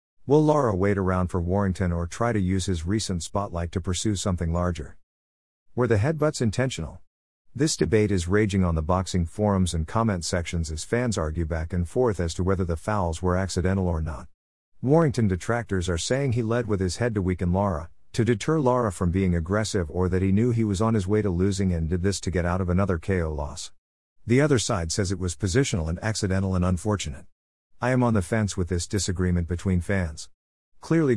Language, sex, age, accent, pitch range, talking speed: English, male, 50-69, American, 90-110 Hz, 210 wpm